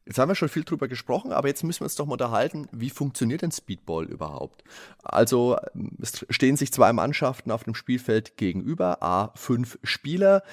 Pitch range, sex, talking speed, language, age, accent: 105-130 Hz, male, 175 wpm, German, 30-49, German